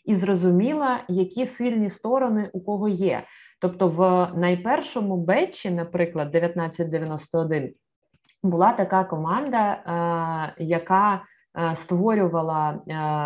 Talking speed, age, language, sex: 85 wpm, 20-39, Ukrainian, female